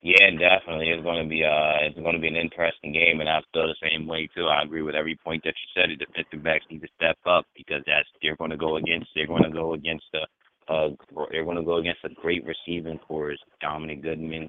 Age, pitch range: 30-49, 80-90 Hz